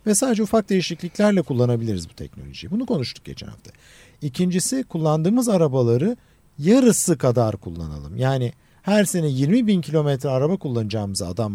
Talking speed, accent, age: 135 wpm, native, 50-69